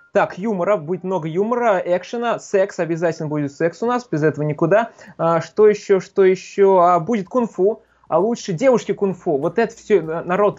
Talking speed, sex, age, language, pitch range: 175 wpm, male, 20-39, Russian, 155-200 Hz